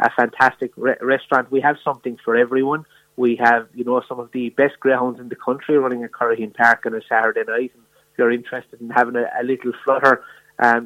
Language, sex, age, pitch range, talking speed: English, male, 30-49, 115-130 Hz, 220 wpm